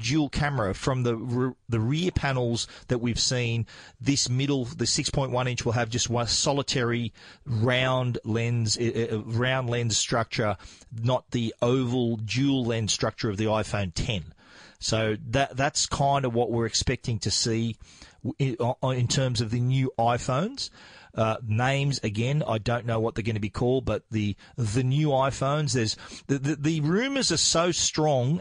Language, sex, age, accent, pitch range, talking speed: English, male, 40-59, Australian, 115-140 Hz, 165 wpm